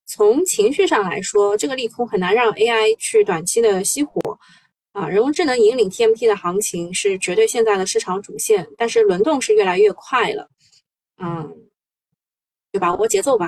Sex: female